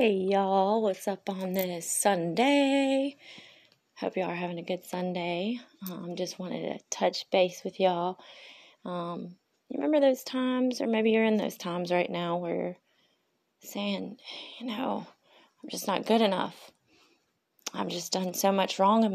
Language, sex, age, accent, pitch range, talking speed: English, female, 20-39, American, 180-225 Hz, 160 wpm